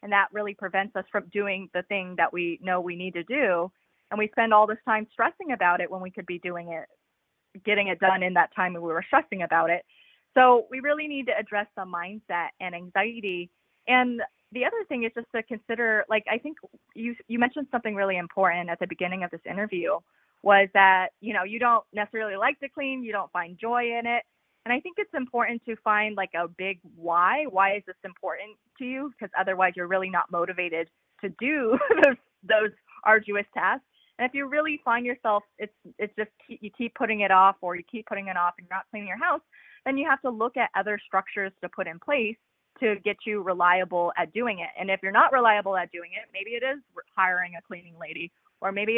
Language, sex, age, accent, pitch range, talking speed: English, female, 20-39, American, 185-235 Hz, 220 wpm